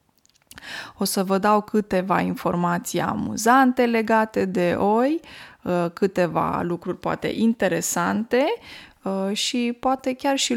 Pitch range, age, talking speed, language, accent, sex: 185-245 Hz, 20-39, 100 wpm, Romanian, native, female